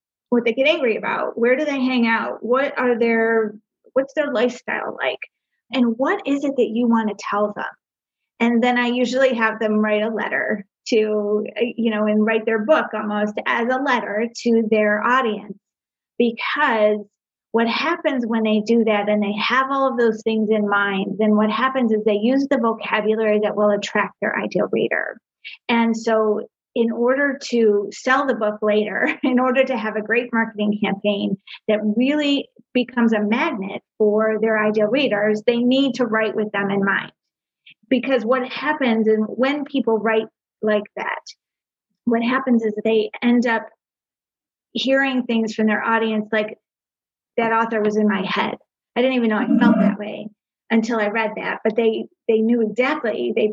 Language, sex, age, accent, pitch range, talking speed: English, female, 30-49, American, 215-250 Hz, 180 wpm